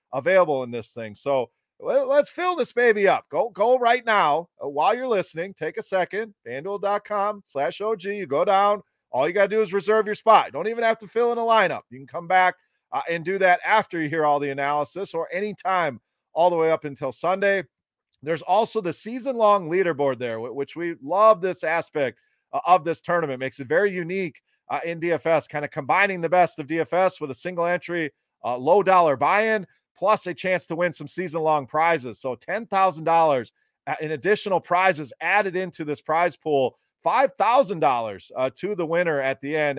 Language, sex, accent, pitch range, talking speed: English, male, American, 155-215 Hz, 190 wpm